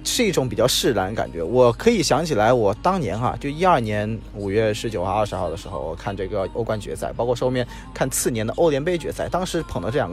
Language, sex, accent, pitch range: Chinese, male, native, 105-130 Hz